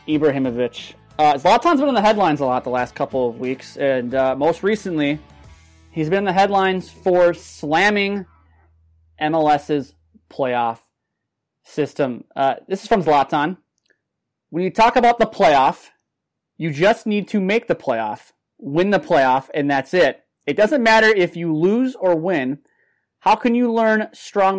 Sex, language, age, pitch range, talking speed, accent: male, English, 30-49, 140-195 Hz, 155 wpm, American